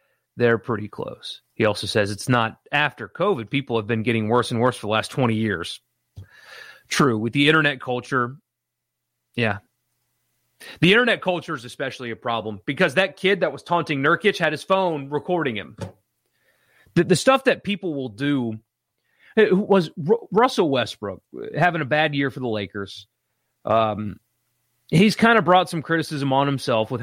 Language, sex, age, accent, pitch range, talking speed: English, male, 30-49, American, 120-165 Hz, 165 wpm